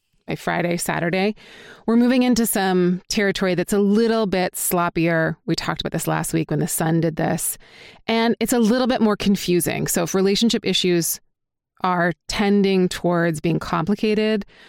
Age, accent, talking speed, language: 30-49, American, 165 wpm, English